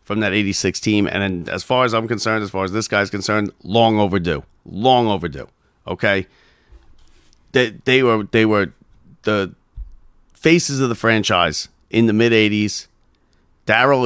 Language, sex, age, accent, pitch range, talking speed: English, male, 40-59, American, 95-125 Hz, 155 wpm